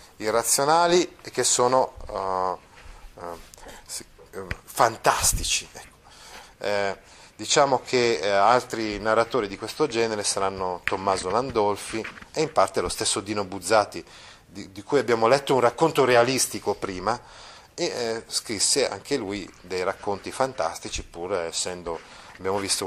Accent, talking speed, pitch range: native, 125 wpm, 100-150 Hz